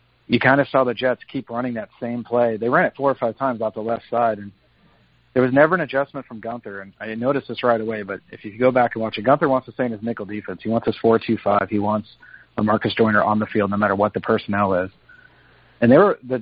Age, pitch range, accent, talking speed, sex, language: 40-59, 110-130 Hz, American, 265 wpm, male, English